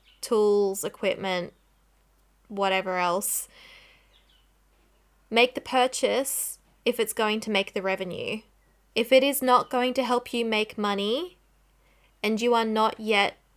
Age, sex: 20-39, female